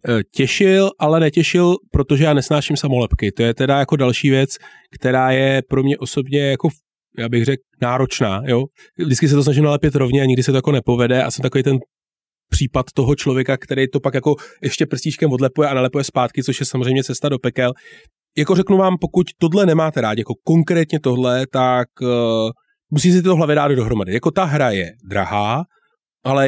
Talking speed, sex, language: 190 wpm, male, Czech